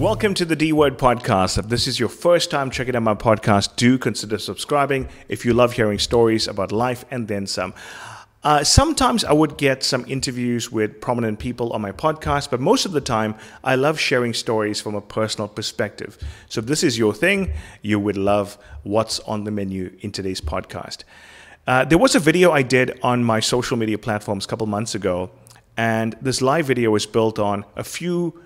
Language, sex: English, male